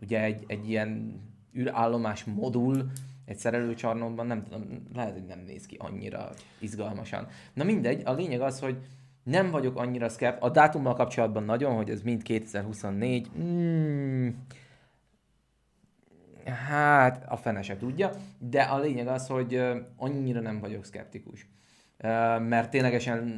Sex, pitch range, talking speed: male, 110-125 Hz, 135 wpm